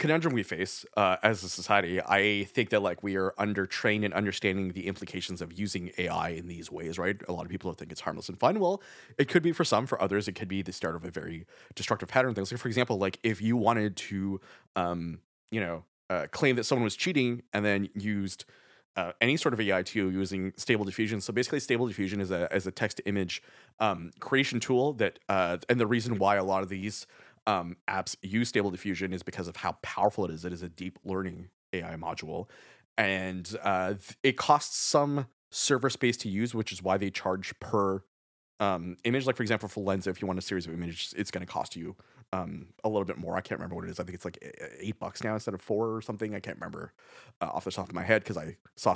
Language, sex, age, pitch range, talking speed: English, male, 30-49, 95-120 Hz, 240 wpm